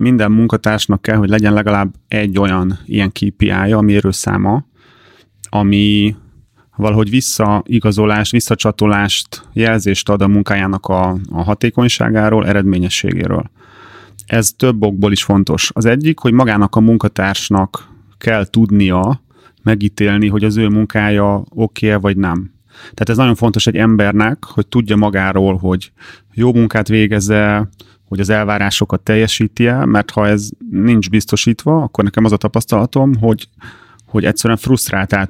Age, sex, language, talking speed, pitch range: 30-49, male, Hungarian, 125 wpm, 100-115 Hz